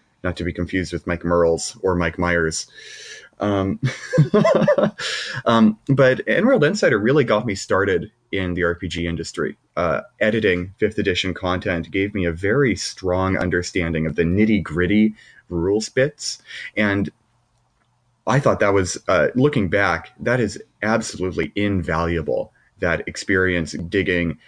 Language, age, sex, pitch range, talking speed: English, 30-49, male, 90-120 Hz, 135 wpm